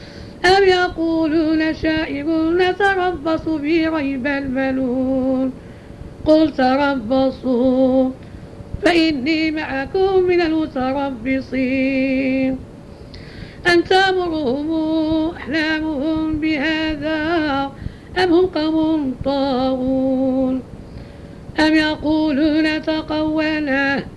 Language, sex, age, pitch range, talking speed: Arabic, female, 50-69, 265-320 Hz, 60 wpm